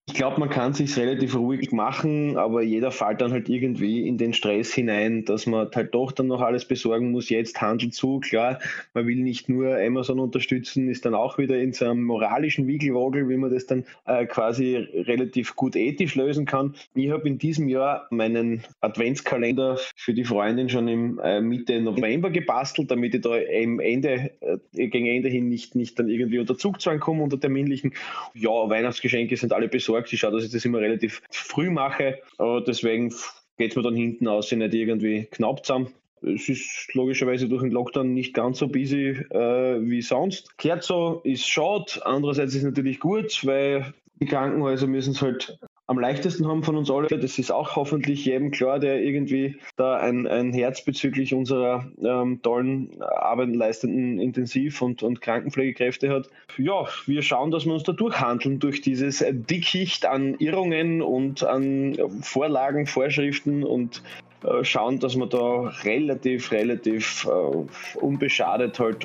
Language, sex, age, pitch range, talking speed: German, male, 20-39, 120-140 Hz, 180 wpm